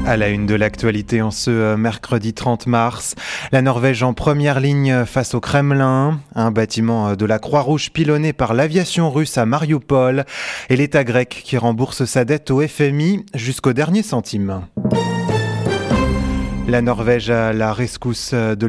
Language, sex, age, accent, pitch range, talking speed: English, male, 20-39, French, 115-140 Hz, 150 wpm